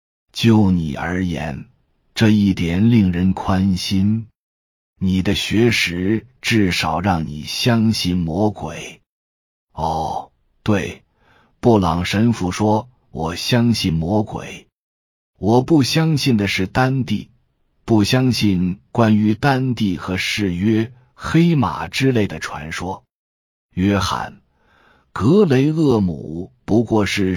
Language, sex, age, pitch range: Chinese, male, 50-69, 90-120 Hz